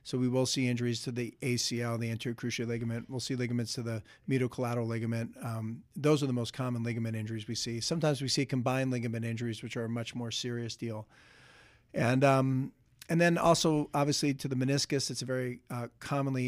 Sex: male